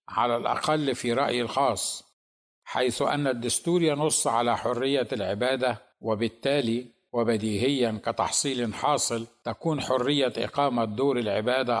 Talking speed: 105 wpm